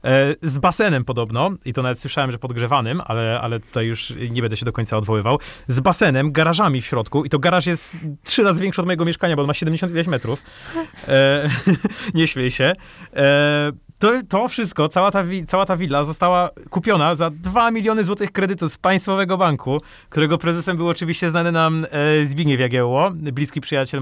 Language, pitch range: Polish, 130-170 Hz